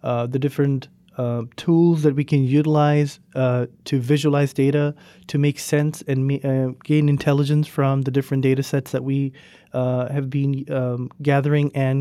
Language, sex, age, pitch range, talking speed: English, male, 30-49, 135-155 Hz, 165 wpm